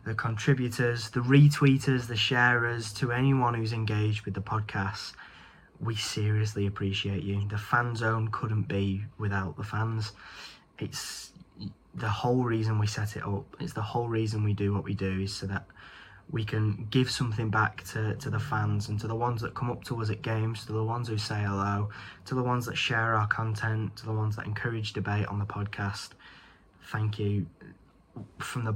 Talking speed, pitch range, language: 190 wpm, 100-115 Hz, English